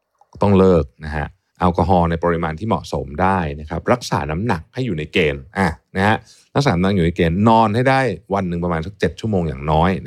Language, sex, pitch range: Thai, male, 80-110 Hz